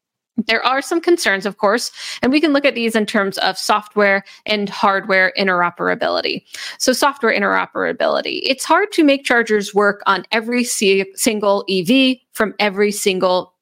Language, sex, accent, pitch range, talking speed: English, female, American, 190-235 Hz, 155 wpm